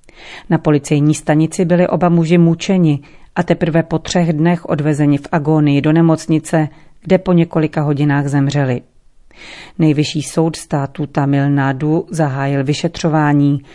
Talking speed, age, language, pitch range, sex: 125 wpm, 40-59, Czech, 140-165 Hz, female